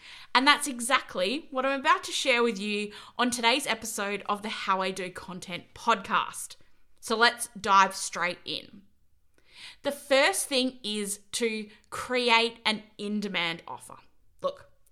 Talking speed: 140 wpm